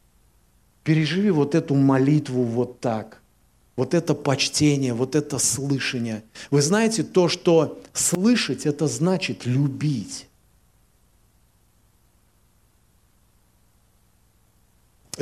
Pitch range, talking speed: 115-160 Hz, 80 wpm